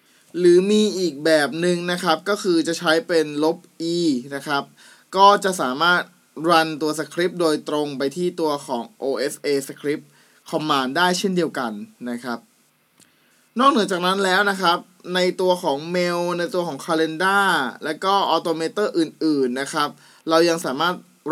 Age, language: 20-39, Thai